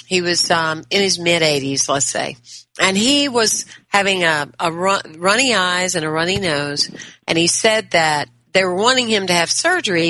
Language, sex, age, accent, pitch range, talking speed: English, female, 50-69, American, 160-235 Hz, 185 wpm